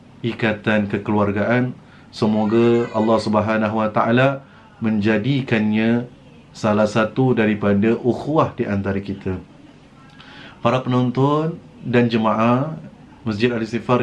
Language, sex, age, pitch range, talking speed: Malay, male, 30-49, 110-125 Hz, 90 wpm